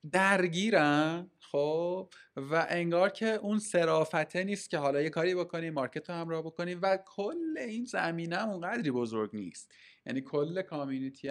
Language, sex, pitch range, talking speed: Persian, male, 130-175 Hz, 145 wpm